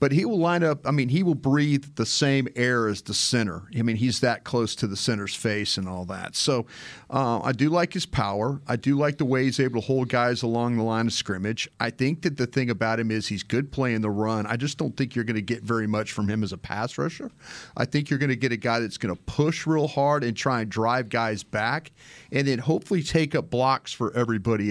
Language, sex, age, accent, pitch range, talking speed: English, male, 40-59, American, 105-130 Hz, 260 wpm